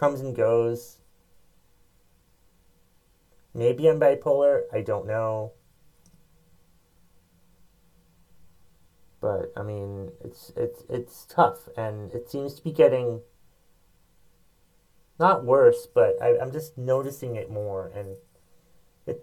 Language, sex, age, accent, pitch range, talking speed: English, male, 30-49, American, 95-150 Hz, 105 wpm